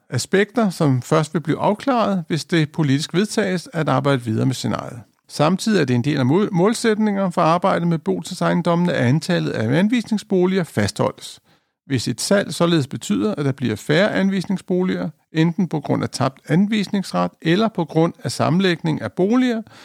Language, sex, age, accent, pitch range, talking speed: Danish, male, 60-79, native, 140-190 Hz, 165 wpm